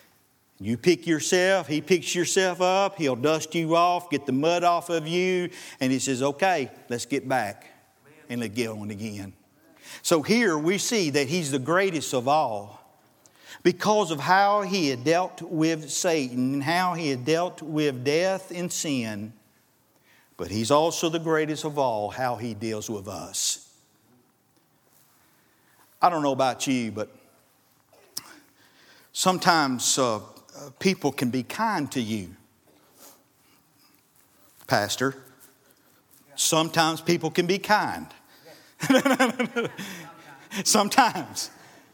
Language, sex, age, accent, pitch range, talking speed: English, male, 50-69, American, 125-170 Hz, 125 wpm